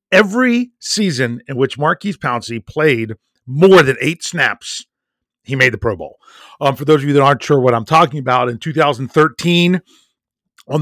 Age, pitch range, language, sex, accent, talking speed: 40-59, 120-155 Hz, English, male, American, 170 wpm